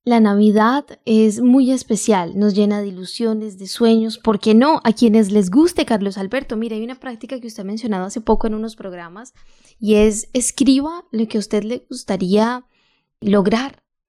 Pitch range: 205-255 Hz